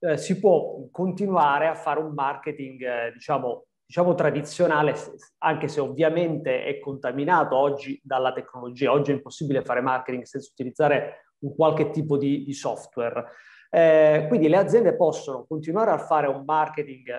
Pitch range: 140-175 Hz